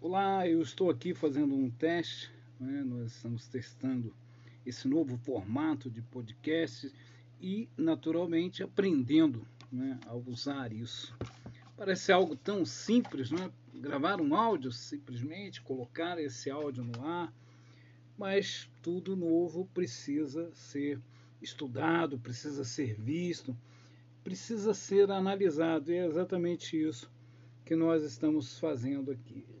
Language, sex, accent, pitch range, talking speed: Portuguese, male, Brazilian, 120-165 Hz, 120 wpm